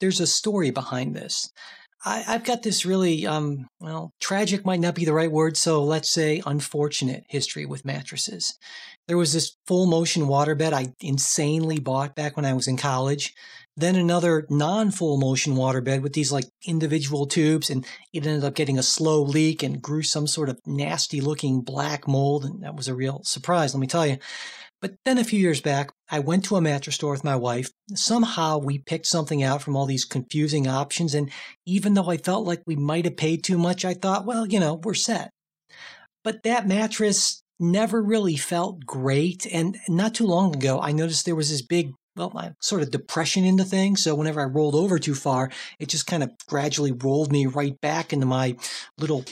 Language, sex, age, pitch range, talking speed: English, male, 40-59, 140-180 Hz, 200 wpm